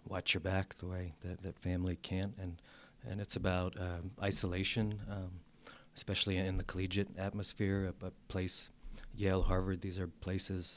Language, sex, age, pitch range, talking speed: English, male, 30-49, 95-105 Hz, 160 wpm